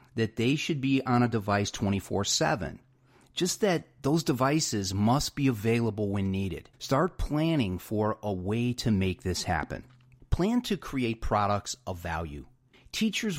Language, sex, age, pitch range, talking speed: English, male, 40-59, 100-135 Hz, 150 wpm